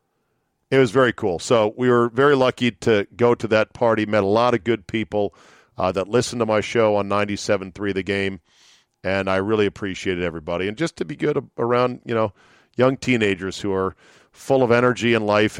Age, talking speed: 40-59, 200 wpm